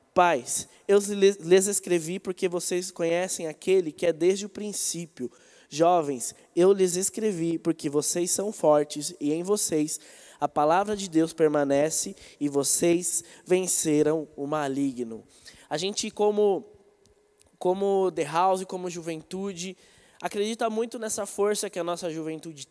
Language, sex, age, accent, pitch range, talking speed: Portuguese, male, 20-39, Brazilian, 165-205 Hz, 130 wpm